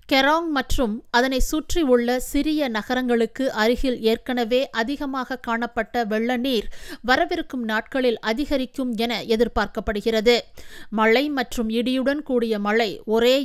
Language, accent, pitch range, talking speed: Tamil, native, 230-270 Hz, 105 wpm